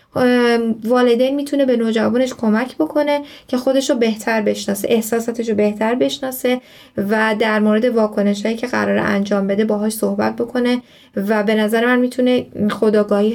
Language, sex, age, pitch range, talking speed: Persian, female, 10-29, 205-250 Hz, 140 wpm